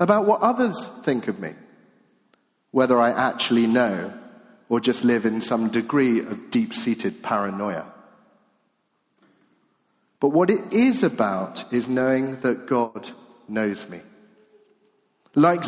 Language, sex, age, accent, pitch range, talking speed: English, male, 40-59, British, 130-220 Hz, 120 wpm